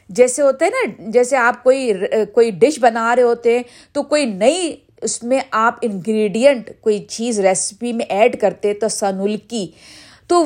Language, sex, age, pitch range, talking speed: Urdu, female, 50-69, 225-315 Hz, 160 wpm